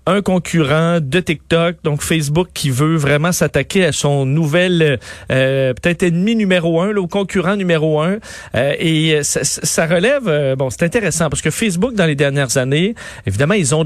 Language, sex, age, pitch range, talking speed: French, male, 40-59, 135-190 Hz, 175 wpm